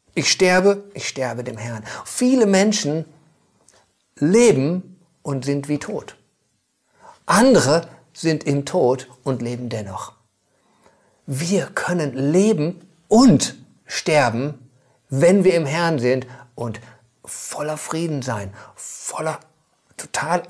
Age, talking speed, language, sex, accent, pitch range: 50-69, 105 wpm, German, male, German, 140-200 Hz